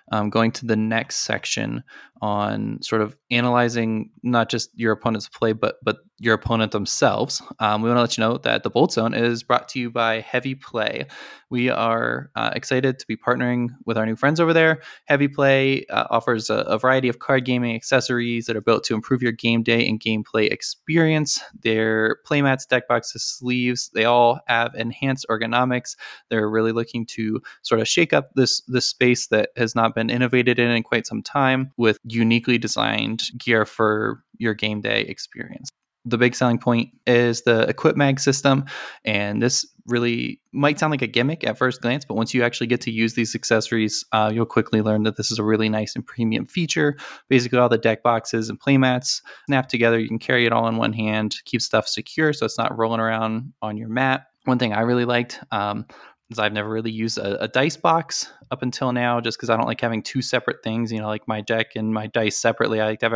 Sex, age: male, 20-39